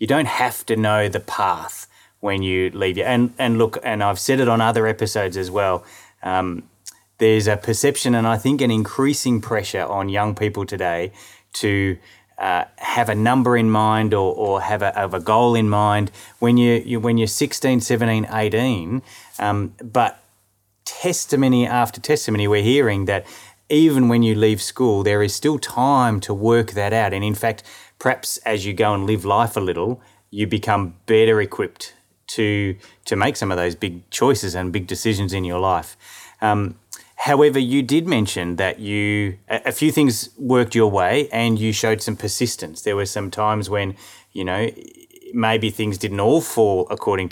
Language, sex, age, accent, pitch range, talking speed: English, male, 20-39, Australian, 100-120 Hz, 180 wpm